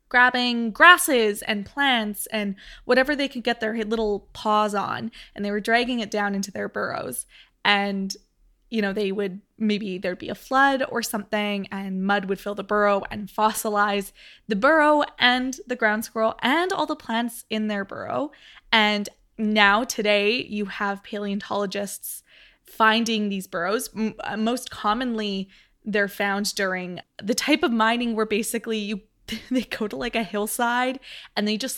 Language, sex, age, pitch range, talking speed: English, female, 20-39, 205-240 Hz, 160 wpm